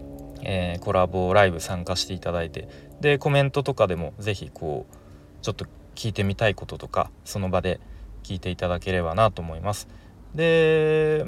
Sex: male